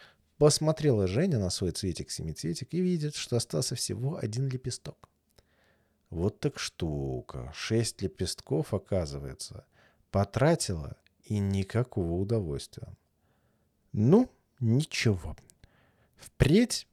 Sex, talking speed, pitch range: male, 90 wpm, 90-135 Hz